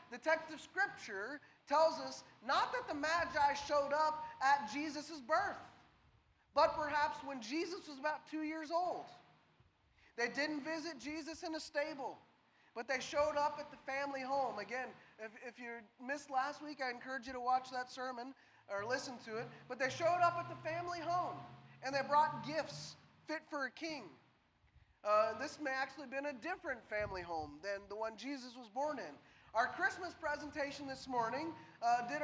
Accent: American